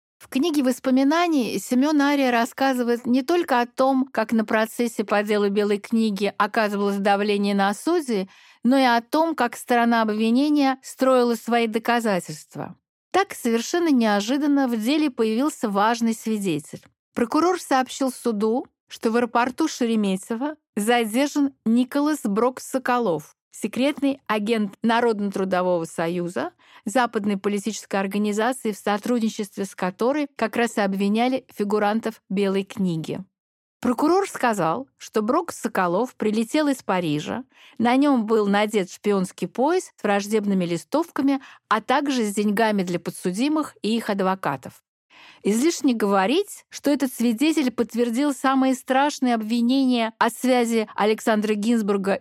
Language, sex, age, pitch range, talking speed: Russian, female, 50-69, 205-265 Hz, 125 wpm